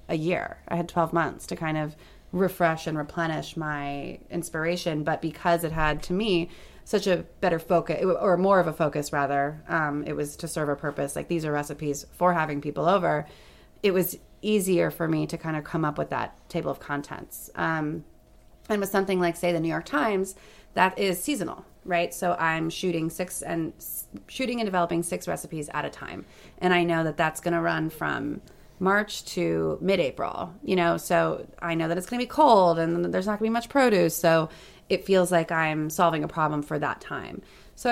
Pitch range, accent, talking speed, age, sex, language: 160-190 Hz, American, 205 wpm, 30-49, female, English